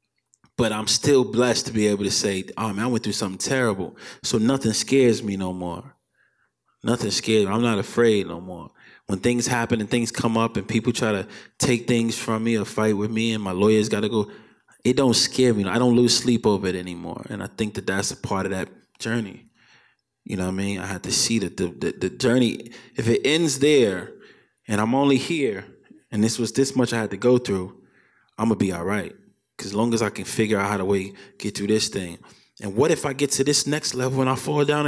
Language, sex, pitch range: English, male, 100-120 Hz